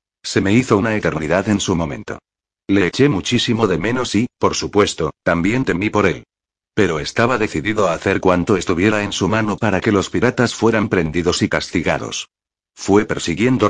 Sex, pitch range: male, 95-115 Hz